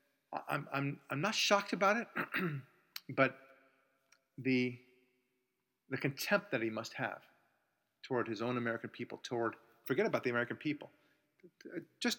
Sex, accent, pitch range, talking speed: male, American, 120-150 Hz, 135 wpm